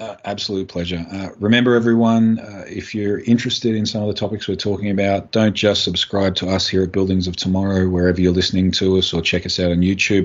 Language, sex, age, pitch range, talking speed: English, male, 30-49, 85-95 Hz, 230 wpm